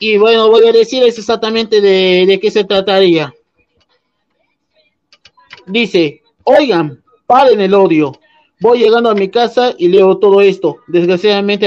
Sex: male